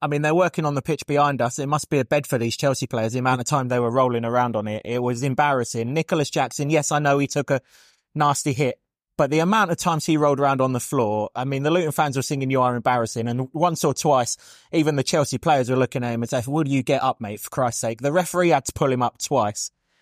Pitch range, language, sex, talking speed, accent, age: 125-150 Hz, English, male, 275 wpm, British, 20-39